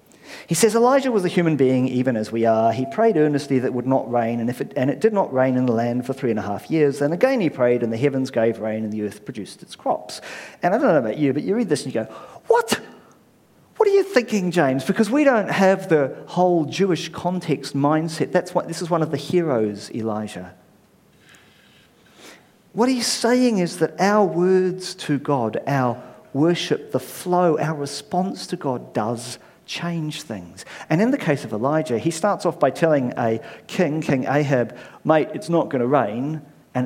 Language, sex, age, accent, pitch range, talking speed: English, male, 40-59, British, 125-180 Hz, 210 wpm